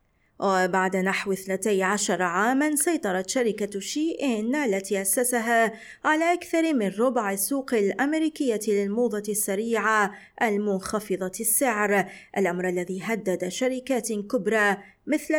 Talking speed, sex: 100 wpm, female